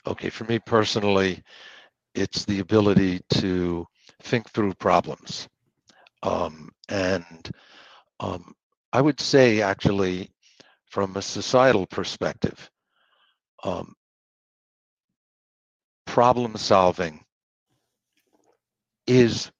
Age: 60-79